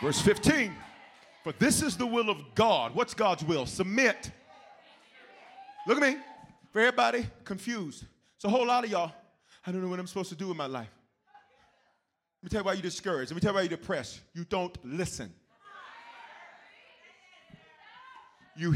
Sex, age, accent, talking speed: male, 30-49, American, 175 wpm